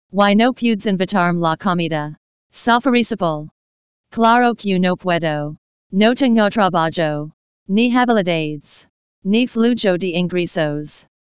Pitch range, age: 165-210 Hz, 40-59